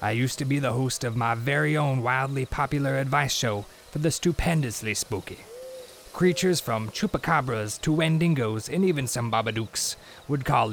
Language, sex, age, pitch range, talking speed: English, male, 20-39, 110-150 Hz, 160 wpm